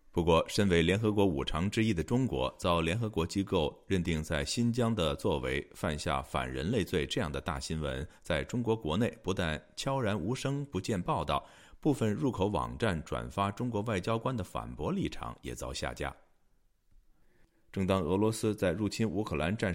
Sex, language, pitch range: male, Chinese, 75-115 Hz